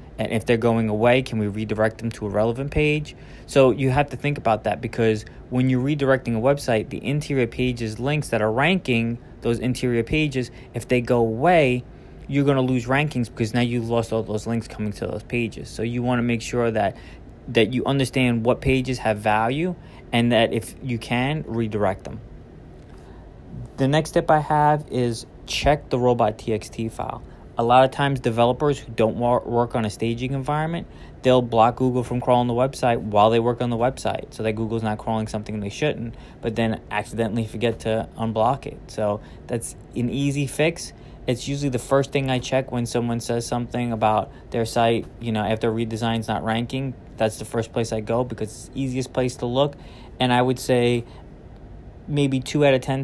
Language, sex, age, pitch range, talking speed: English, male, 20-39, 110-130 Hz, 200 wpm